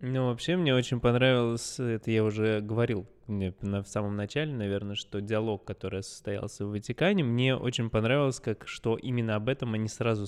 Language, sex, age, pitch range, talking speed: Russian, male, 20-39, 105-135 Hz, 170 wpm